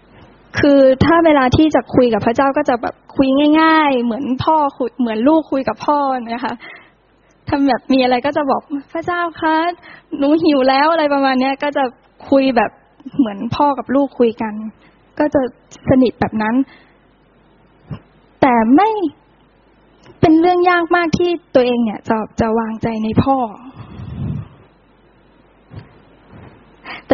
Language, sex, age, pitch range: Thai, female, 10-29, 240-305 Hz